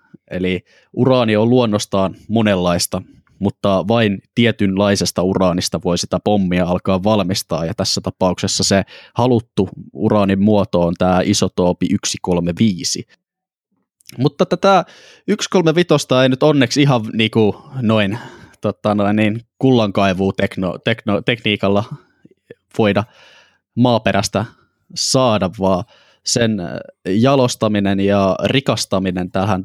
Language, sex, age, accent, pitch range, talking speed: Finnish, male, 20-39, native, 95-115 Hz, 100 wpm